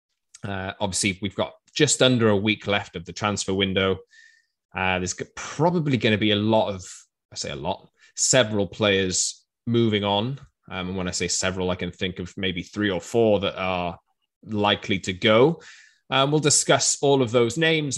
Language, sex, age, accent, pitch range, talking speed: English, male, 20-39, British, 95-120 Hz, 185 wpm